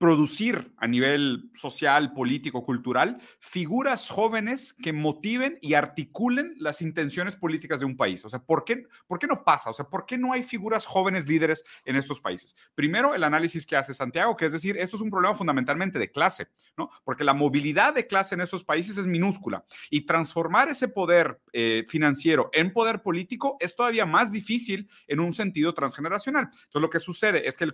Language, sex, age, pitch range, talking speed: Spanish, male, 40-59, 145-215 Hz, 195 wpm